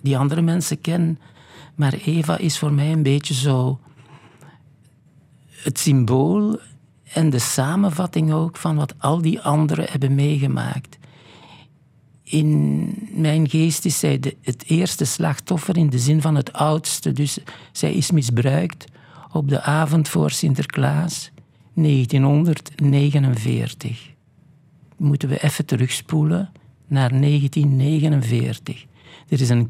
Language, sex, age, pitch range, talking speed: Dutch, male, 60-79, 130-155 Hz, 115 wpm